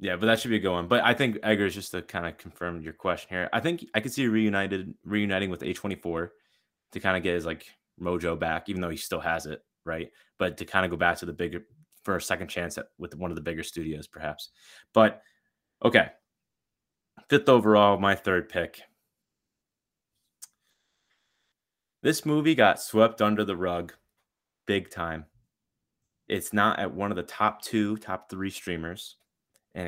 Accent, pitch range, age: American, 90-125 Hz, 20-39